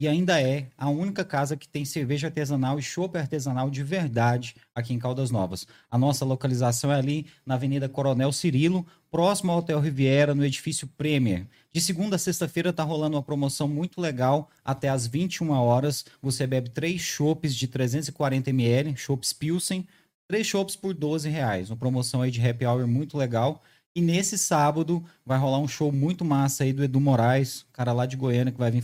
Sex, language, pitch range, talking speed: male, Portuguese, 125-155 Hz, 185 wpm